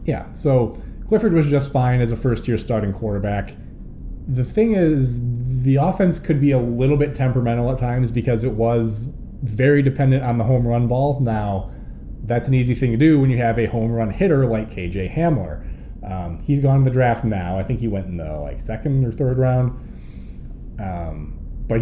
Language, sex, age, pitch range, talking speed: English, male, 20-39, 100-135 Hz, 195 wpm